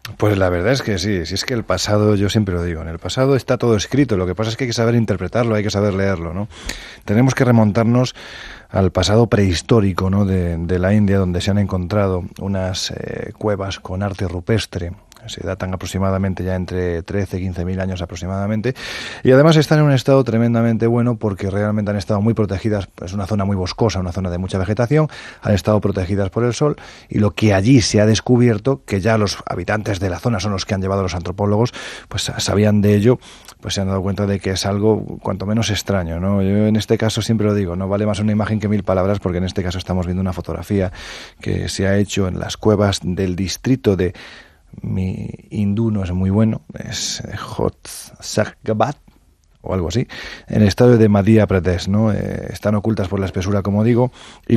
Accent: Spanish